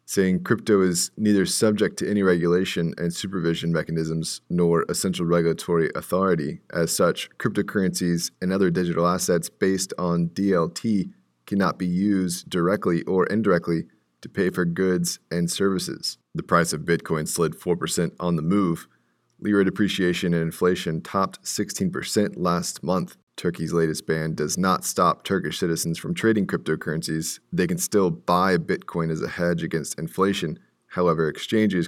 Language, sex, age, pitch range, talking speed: English, male, 30-49, 80-90 Hz, 145 wpm